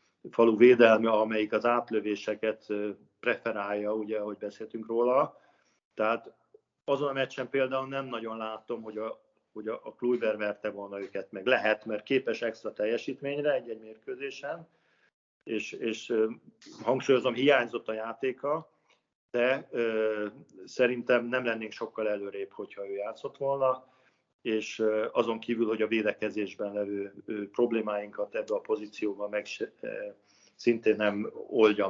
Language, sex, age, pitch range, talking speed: Hungarian, male, 50-69, 105-125 Hz, 120 wpm